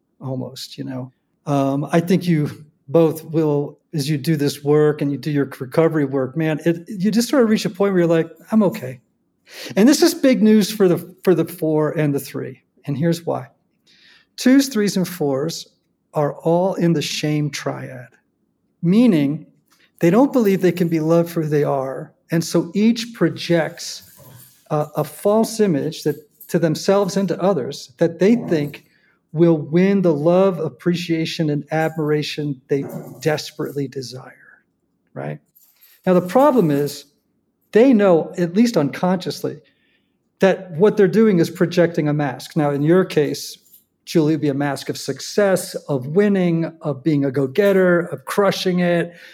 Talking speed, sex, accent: 165 wpm, male, American